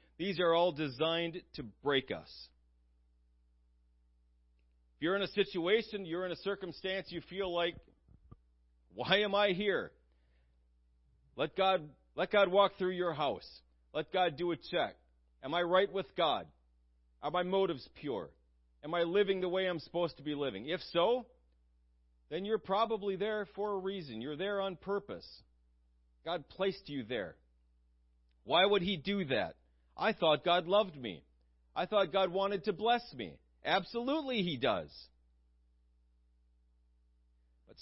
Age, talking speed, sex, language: 40-59, 150 wpm, male, English